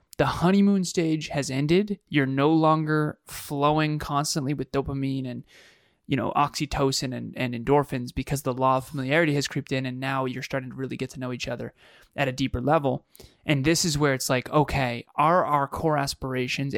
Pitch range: 130-155 Hz